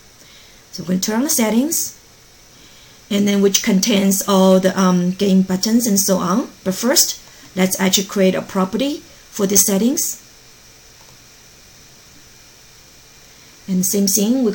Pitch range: 195-240 Hz